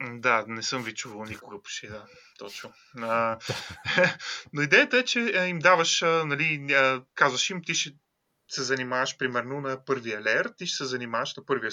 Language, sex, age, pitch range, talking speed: Bulgarian, male, 20-39, 130-190 Hz, 170 wpm